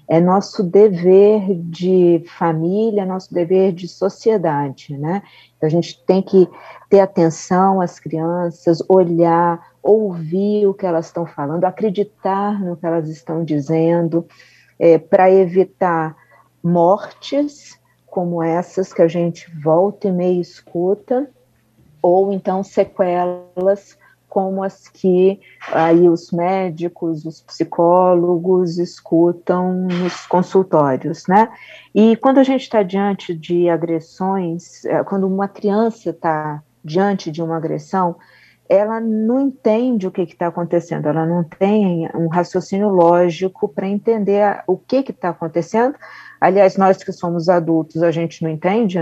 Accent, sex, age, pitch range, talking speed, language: Brazilian, female, 40-59, 165-195 Hz, 130 wpm, Portuguese